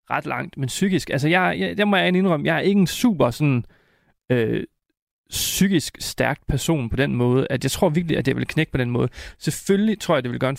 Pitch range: 125-160 Hz